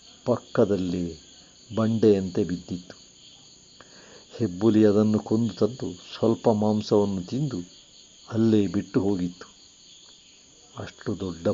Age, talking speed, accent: 50-69, 80 wpm, native